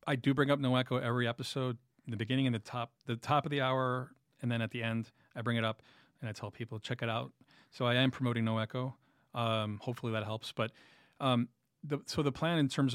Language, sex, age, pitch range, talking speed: English, male, 40-59, 115-130 Hz, 240 wpm